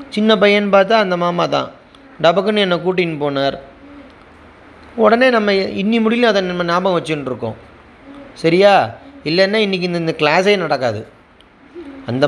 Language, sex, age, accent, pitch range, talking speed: Tamil, male, 30-49, native, 145-200 Hz, 125 wpm